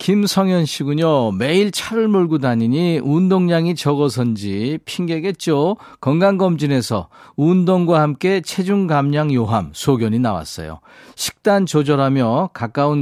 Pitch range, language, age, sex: 125-175 Hz, Korean, 40-59, male